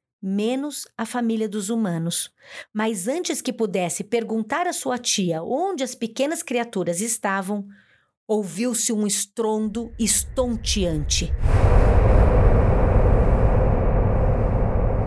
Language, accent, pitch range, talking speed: Portuguese, Brazilian, 180-260 Hz, 90 wpm